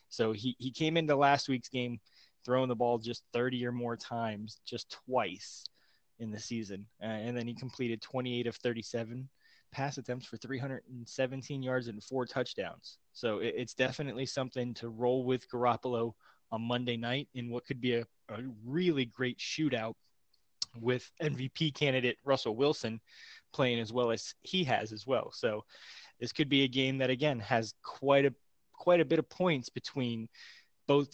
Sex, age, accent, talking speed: male, 20-39, American, 170 wpm